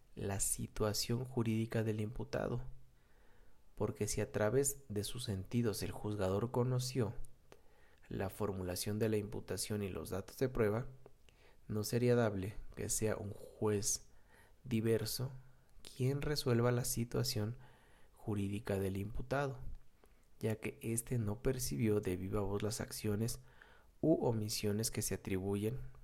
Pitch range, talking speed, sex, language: 100-125 Hz, 125 wpm, male, Spanish